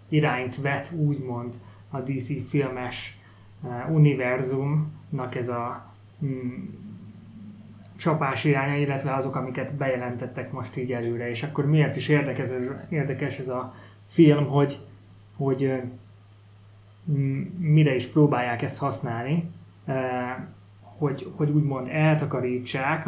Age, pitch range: 20-39, 125-150 Hz